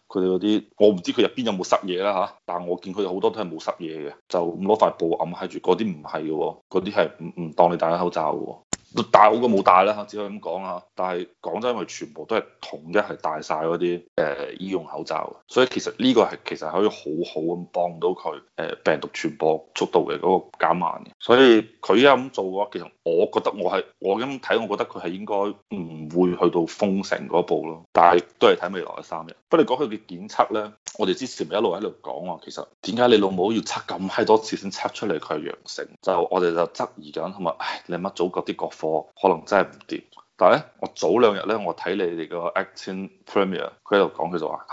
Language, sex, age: Chinese, male, 20-39